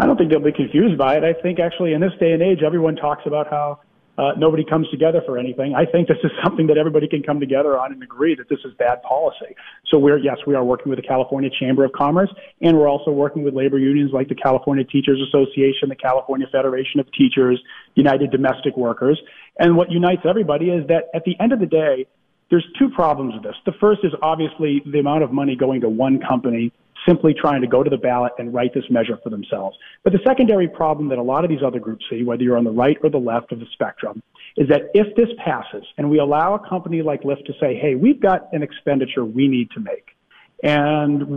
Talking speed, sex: 240 wpm, male